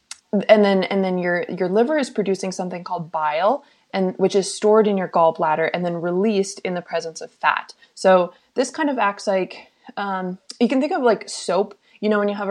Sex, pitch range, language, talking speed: female, 175-215 Hz, English, 215 wpm